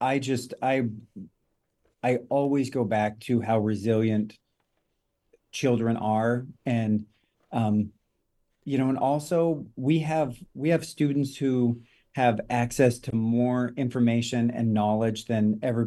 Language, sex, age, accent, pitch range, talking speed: English, male, 40-59, American, 110-130 Hz, 125 wpm